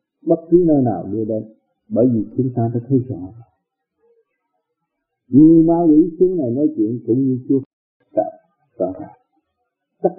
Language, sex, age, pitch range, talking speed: Vietnamese, male, 50-69, 120-175 Hz, 155 wpm